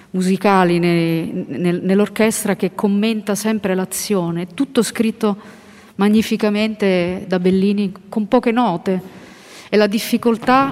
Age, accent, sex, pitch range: 40-59, native, female, 185-225 Hz